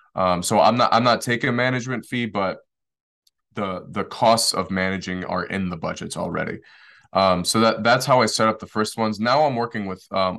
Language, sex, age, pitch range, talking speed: English, male, 20-39, 90-110 Hz, 215 wpm